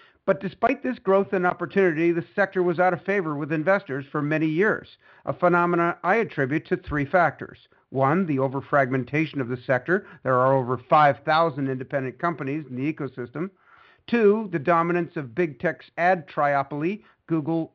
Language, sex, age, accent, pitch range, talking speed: English, male, 50-69, American, 150-185 Hz, 160 wpm